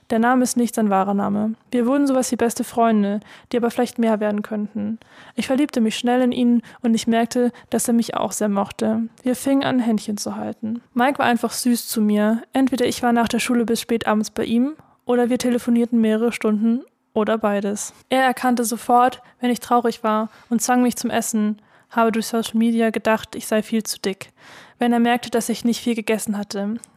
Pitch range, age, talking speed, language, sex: 220-245 Hz, 20-39, 210 wpm, German, female